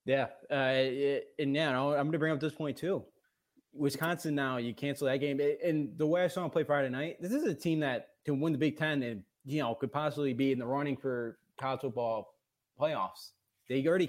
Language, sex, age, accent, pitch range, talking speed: English, male, 20-39, American, 125-155 Hz, 235 wpm